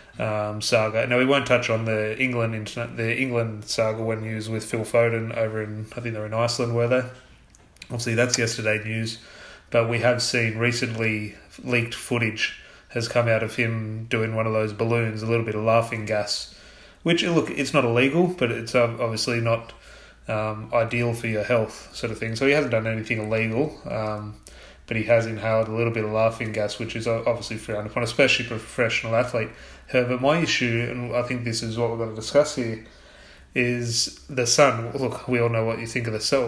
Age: 20-39